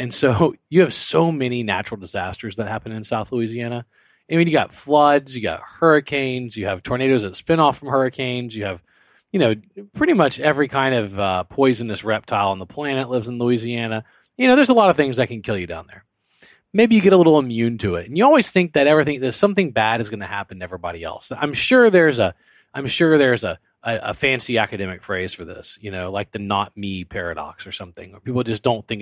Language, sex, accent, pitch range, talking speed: English, male, American, 105-155 Hz, 235 wpm